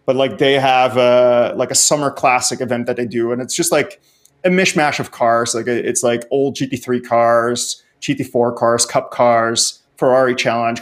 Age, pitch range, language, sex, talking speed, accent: 30-49, 120-140 Hz, English, male, 185 wpm, Canadian